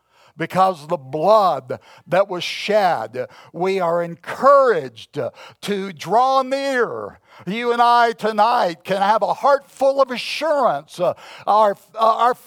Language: English